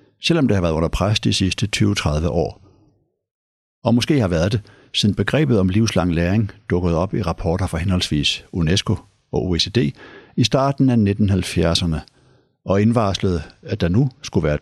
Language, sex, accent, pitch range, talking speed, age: Danish, male, native, 90-120 Hz, 165 wpm, 60-79